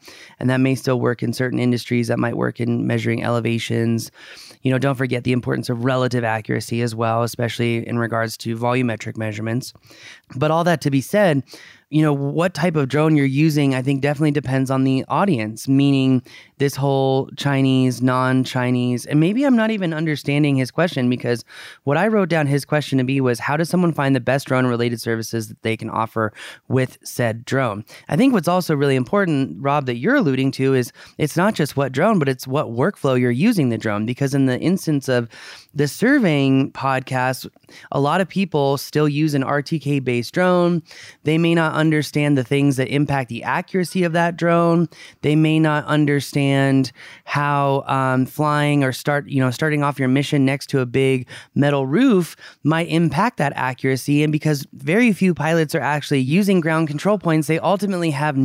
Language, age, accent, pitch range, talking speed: English, 20-39, American, 130-155 Hz, 190 wpm